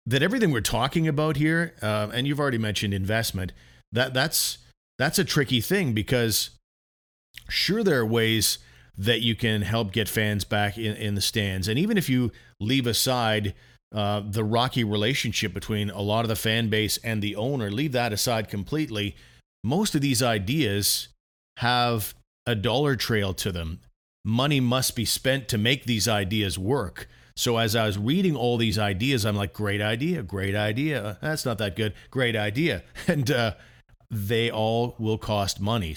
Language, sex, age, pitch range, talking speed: English, male, 40-59, 100-125 Hz, 175 wpm